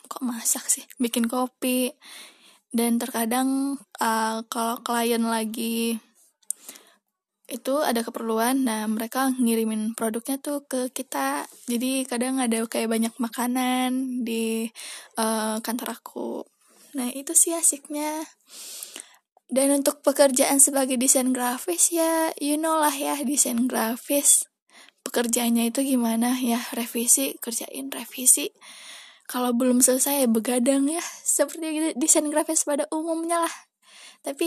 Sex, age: female, 20-39